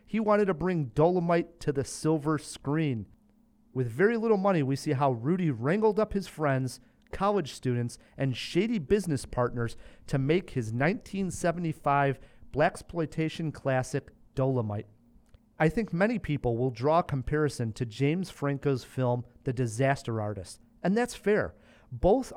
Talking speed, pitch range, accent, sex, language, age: 140 wpm, 125-175 Hz, American, male, English, 40-59